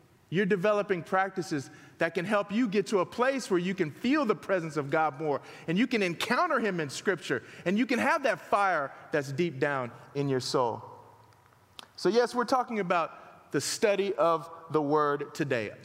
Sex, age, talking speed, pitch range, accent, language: male, 30-49, 190 wpm, 155-230 Hz, American, English